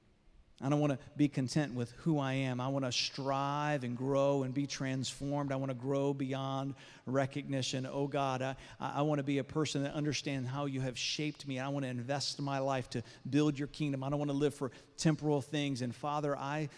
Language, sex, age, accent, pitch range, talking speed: English, male, 40-59, American, 130-150 Hz, 220 wpm